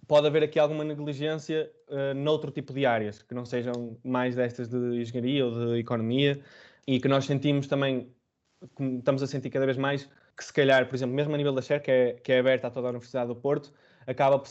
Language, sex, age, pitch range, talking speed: Portuguese, male, 20-39, 130-145 Hz, 230 wpm